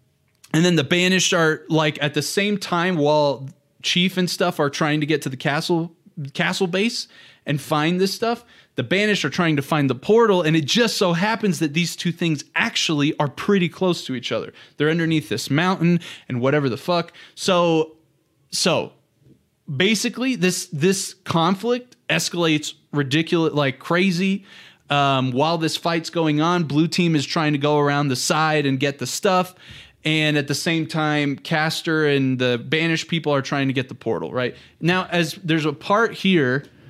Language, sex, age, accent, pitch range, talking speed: English, male, 20-39, American, 140-175 Hz, 180 wpm